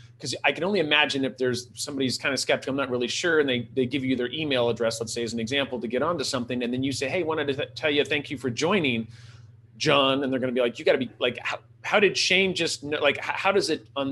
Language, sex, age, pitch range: English, male, 30-49, 120-150 Hz